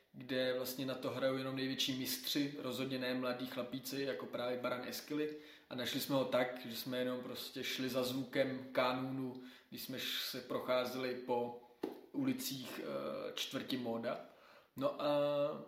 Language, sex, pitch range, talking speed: Czech, male, 125-135 Hz, 145 wpm